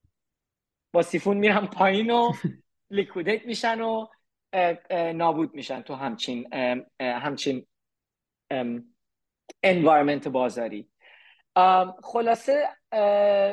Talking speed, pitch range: 70 wpm, 165-225 Hz